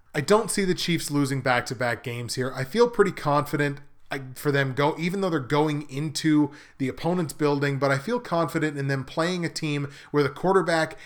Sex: male